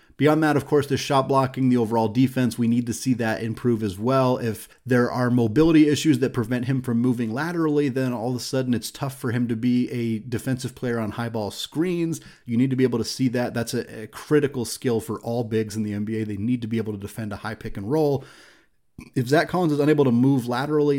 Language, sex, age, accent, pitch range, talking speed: English, male, 30-49, American, 115-145 Hz, 245 wpm